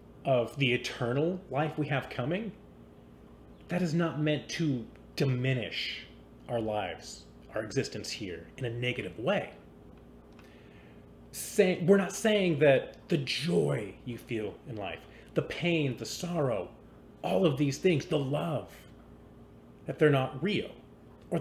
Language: English